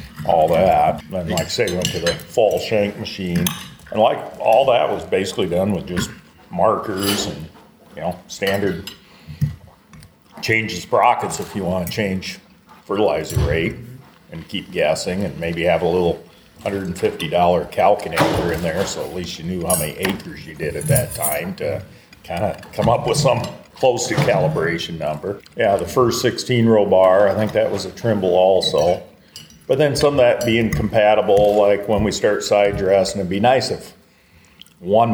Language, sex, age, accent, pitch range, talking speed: English, male, 40-59, American, 95-110 Hz, 180 wpm